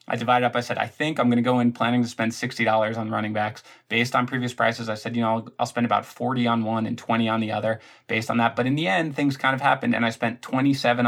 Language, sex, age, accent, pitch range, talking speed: English, male, 20-39, American, 110-130 Hz, 290 wpm